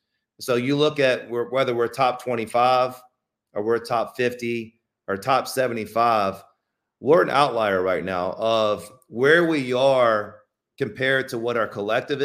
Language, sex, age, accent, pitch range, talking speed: English, male, 40-59, American, 115-135 Hz, 145 wpm